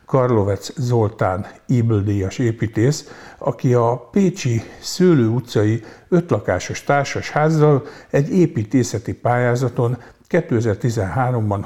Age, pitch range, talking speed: 60-79, 105-130 Hz, 75 wpm